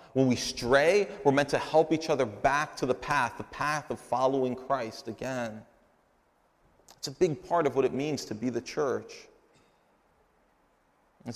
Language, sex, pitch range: English, male, 115-150 Hz